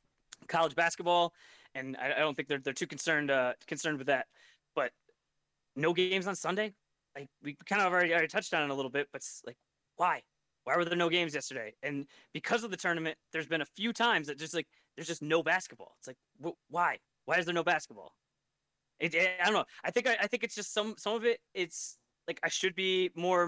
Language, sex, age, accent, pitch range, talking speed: English, male, 20-39, American, 155-190 Hz, 230 wpm